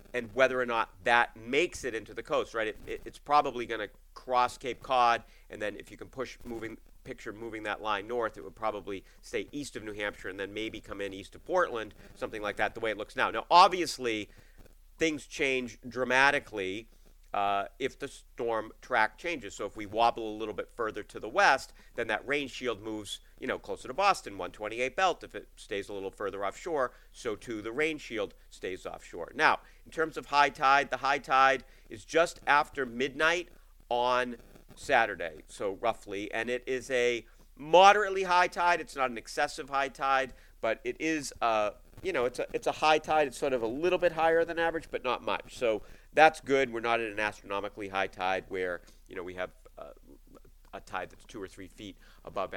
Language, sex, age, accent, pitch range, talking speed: English, male, 40-59, American, 110-155 Hz, 210 wpm